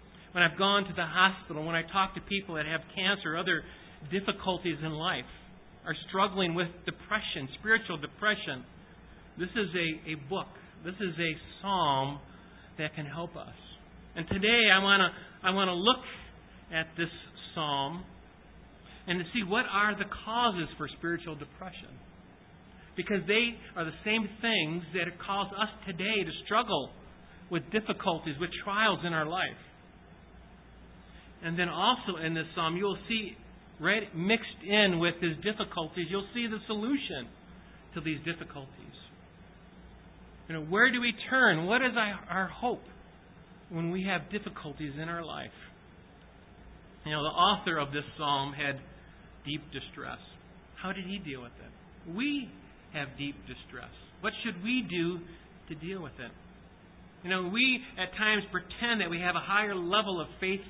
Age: 50-69